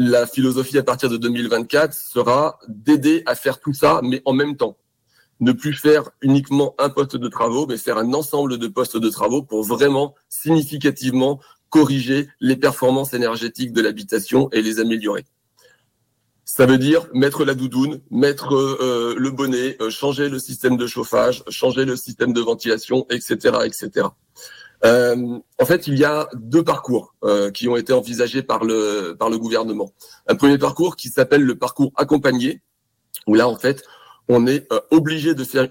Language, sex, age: French, male, 40-59